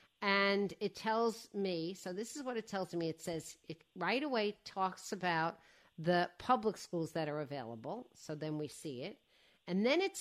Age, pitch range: 50-69, 165-215 Hz